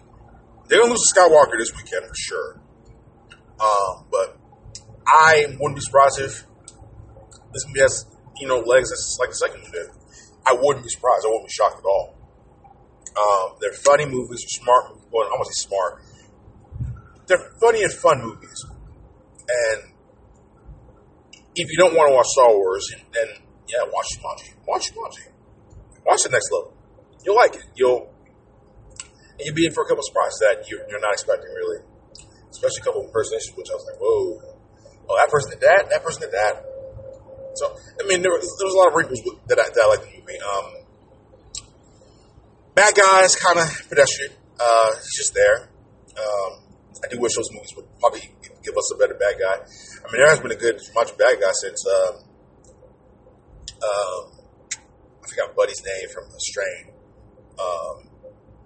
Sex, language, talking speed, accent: male, English, 180 wpm, American